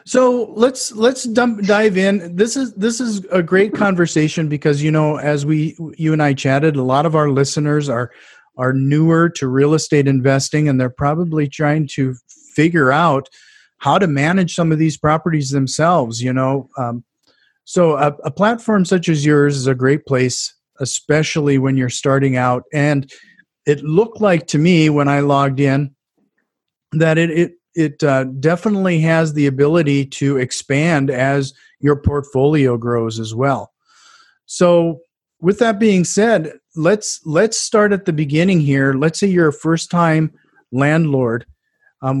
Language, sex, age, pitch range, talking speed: English, male, 40-59, 135-175 Hz, 160 wpm